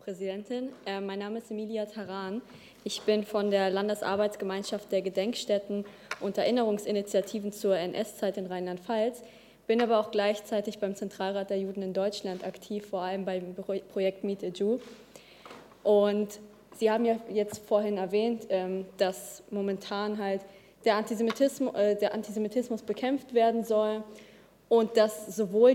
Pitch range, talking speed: 195-215 Hz, 135 wpm